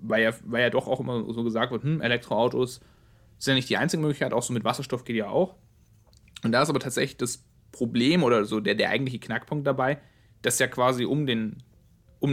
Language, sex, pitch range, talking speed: German, male, 110-130 Hz, 210 wpm